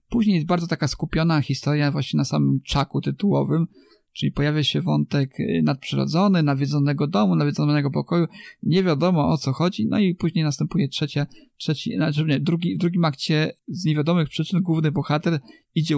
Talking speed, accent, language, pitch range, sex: 150 wpm, native, Polish, 140-175 Hz, male